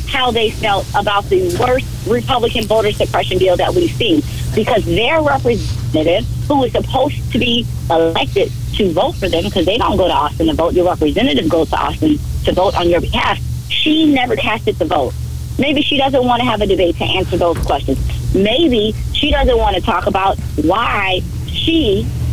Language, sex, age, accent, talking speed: English, female, 40-59, American, 190 wpm